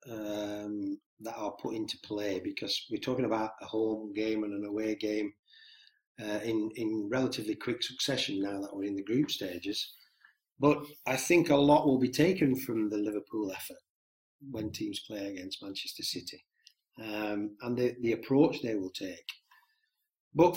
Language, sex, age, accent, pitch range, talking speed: English, male, 40-59, British, 105-140 Hz, 165 wpm